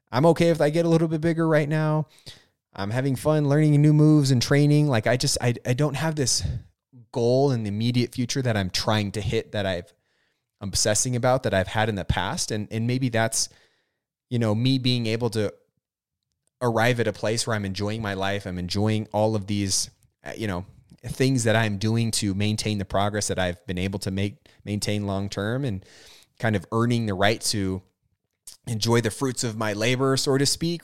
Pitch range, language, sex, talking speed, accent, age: 105-135 Hz, English, male, 210 wpm, American, 20-39